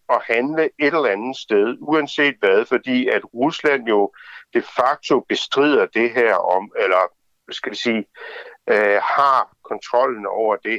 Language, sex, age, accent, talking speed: Danish, male, 60-79, native, 150 wpm